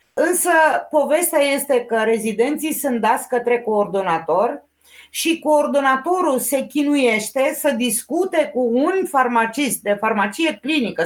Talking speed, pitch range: 115 wpm, 220-275 Hz